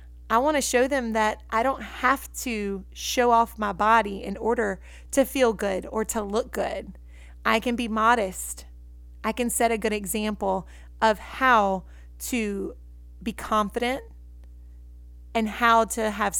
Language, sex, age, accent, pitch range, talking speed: English, female, 30-49, American, 185-240 Hz, 155 wpm